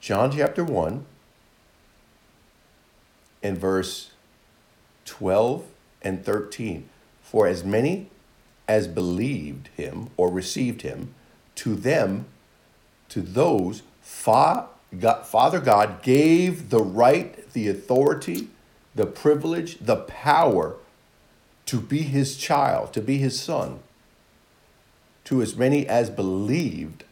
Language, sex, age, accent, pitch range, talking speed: English, male, 50-69, American, 100-145 Hz, 100 wpm